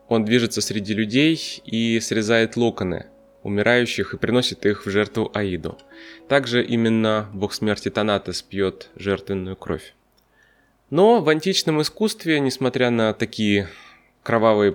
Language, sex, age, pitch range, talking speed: Russian, male, 20-39, 100-130 Hz, 120 wpm